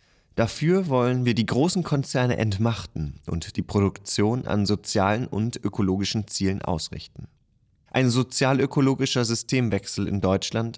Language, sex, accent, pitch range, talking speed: German, male, German, 95-125 Hz, 115 wpm